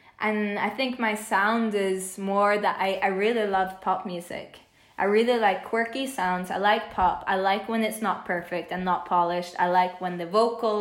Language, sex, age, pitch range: Danish, female, 20-39, 180-210 Hz